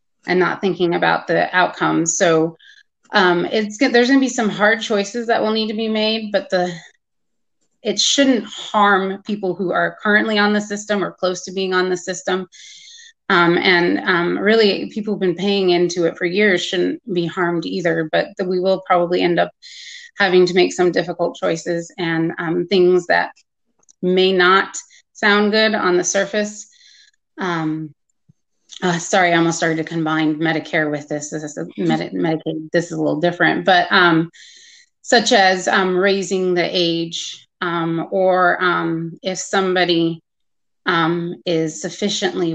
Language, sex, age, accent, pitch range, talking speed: English, female, 30-49, American, 170-210 Hz, 165 wpm